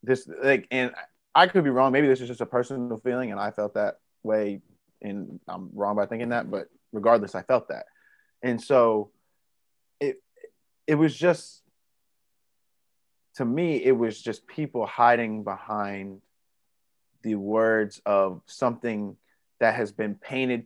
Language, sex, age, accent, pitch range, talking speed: English, male, 20-39, American, 100-115 Hz, 150 wpm